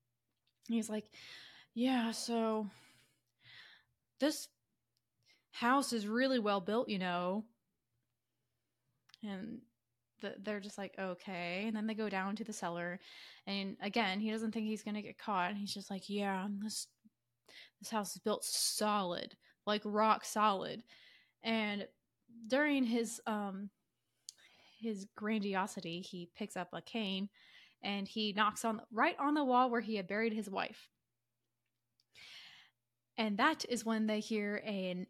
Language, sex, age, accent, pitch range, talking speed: English, female, 20-39, American, 195-230 Hz, 140 wpm